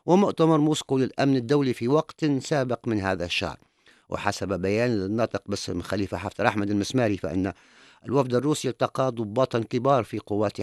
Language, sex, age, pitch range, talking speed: English, male, 50-69, 100-130 Hz, 145 wpm